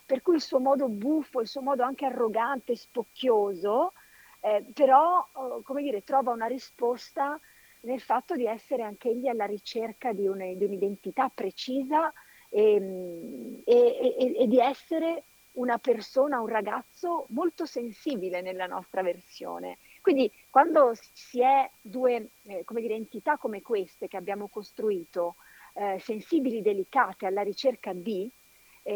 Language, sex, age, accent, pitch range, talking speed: Italian, female, 50-69, native, 200-270 Hz, 140 wpm